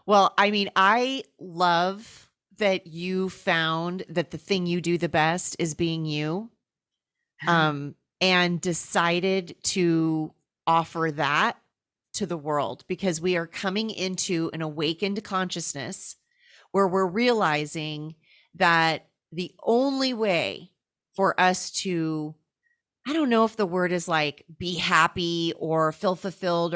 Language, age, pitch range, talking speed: English, 30-49, 165-210 Hz, 130 wpm